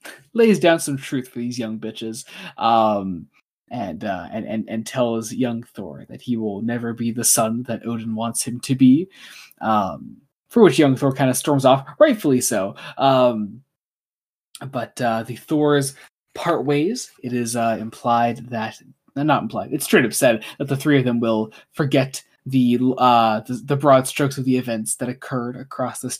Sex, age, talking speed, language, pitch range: male, 20-39, 180 wpm, English, 115-145 Hz